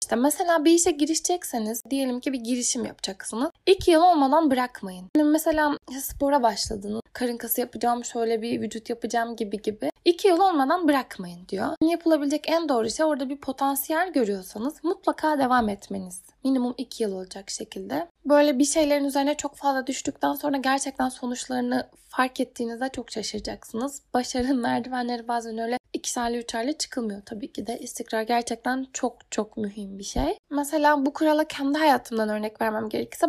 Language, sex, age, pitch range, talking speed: Turkish, female, 10-29, 235-295 Hz, 160 wpm